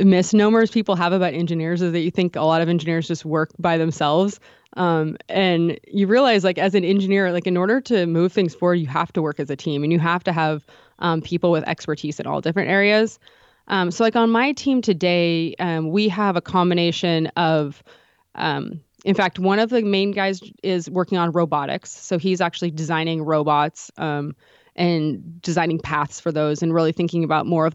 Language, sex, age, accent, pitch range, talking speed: English, female, 20-39, American, 160-190 Hz, 205 wpm